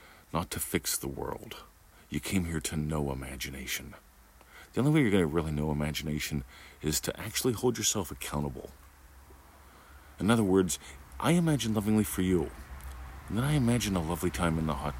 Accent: American